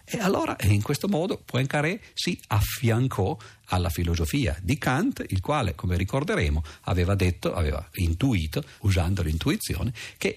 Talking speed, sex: 135 wpm, male